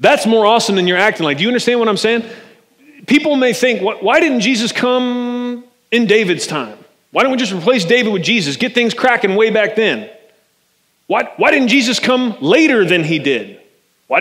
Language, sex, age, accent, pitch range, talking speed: English, male, 30-49, American, 210-255 Hz, 195 wpm